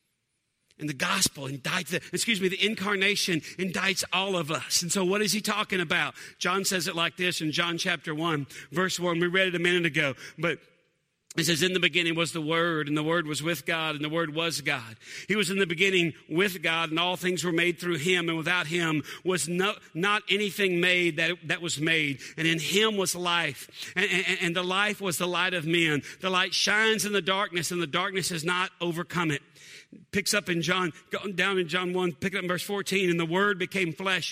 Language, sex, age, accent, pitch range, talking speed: English, male, 50-69, American, 170-200 Hz, 225 wpm